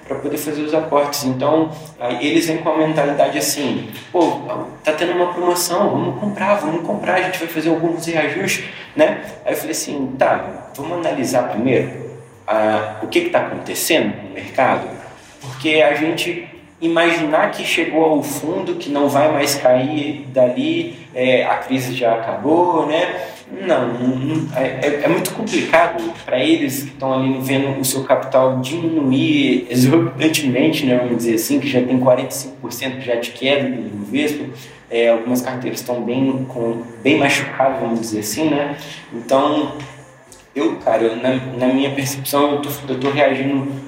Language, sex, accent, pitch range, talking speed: Portuguese, male, Brazilian, 125-155 Hz, 165 wpm